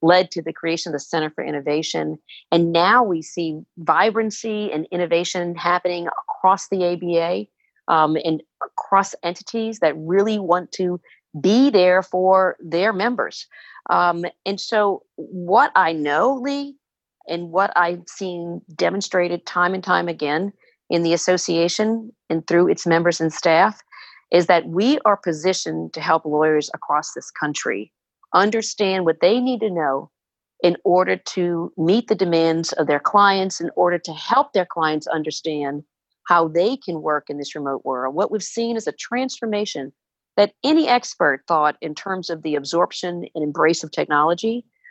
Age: 40-59